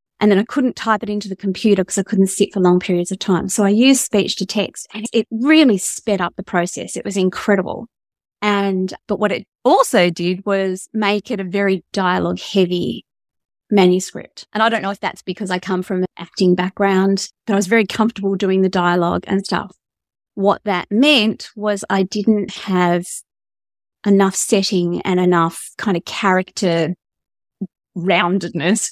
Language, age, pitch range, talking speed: English, 30-49, 180-210 Hz, 180 wpm